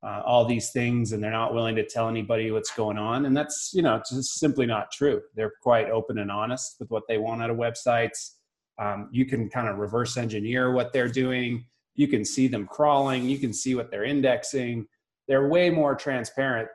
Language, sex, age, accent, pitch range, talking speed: English, male, 30-49, American, 110-130 Hz, 210 wpm